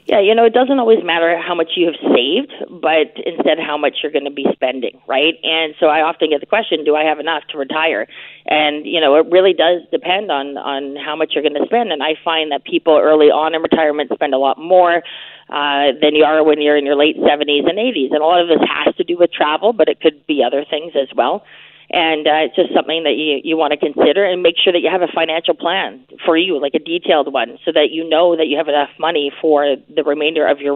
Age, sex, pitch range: 30-49, female, 145-170 Hz